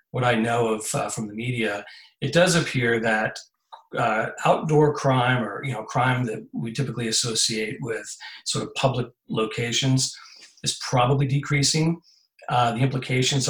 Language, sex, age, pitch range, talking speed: English, male, 40-59, 120-140 Hz, 150 wpm